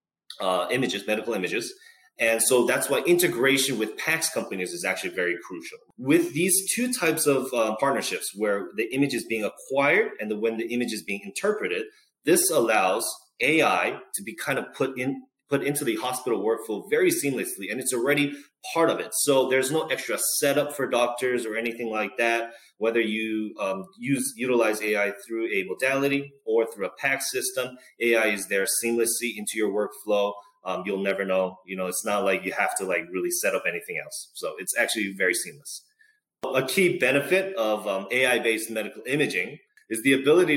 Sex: male